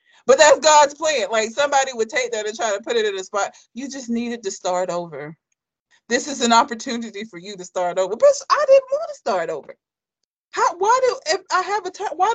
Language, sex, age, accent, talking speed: English, female, 30-49, American, 235 wpm